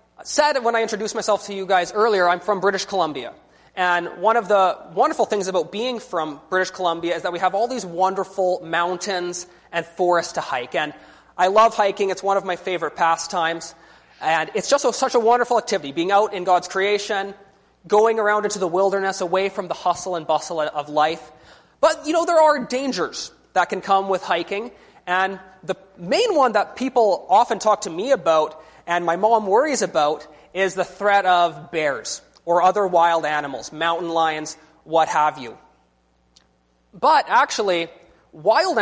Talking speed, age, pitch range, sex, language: 180 wpm, 20-39, 165-205 Hz, male, English